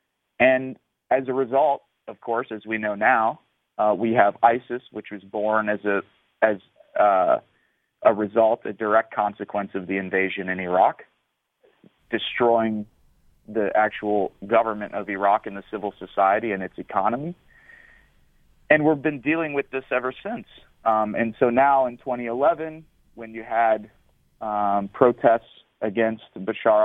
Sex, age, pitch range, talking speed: male, 30-49, 105-120 Hz, 145 wpm